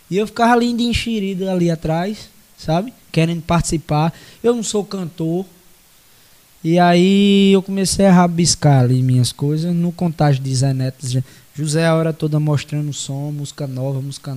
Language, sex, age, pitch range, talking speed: Portuguese, male, 20-39, 150-215 Hz, 160 wpm